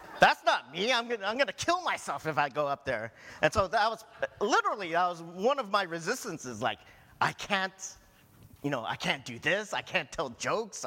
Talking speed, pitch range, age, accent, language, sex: 205 wpm, 110-175 Hz, 40-59, American, English, male